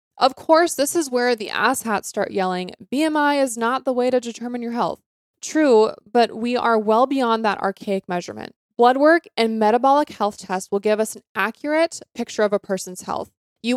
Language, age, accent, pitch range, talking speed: English, 20-39, American, 195-255 Hz, 190 wpm